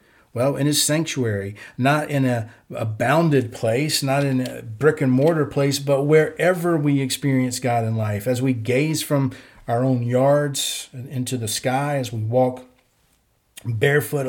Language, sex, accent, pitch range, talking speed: English, male, American, 120-145 Hz, 160 wpm